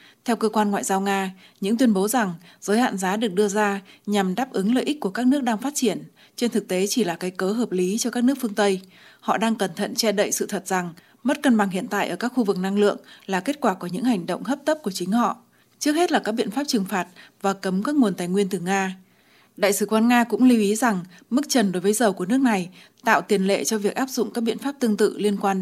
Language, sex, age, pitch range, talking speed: Vietnamese, female, 20-39, 190-230 Hz, 280 wpm